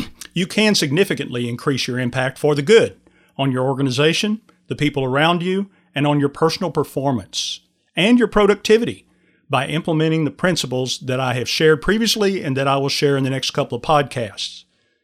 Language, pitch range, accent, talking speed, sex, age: English, 135-180 Hz, American, 175 wpm, male, 40-59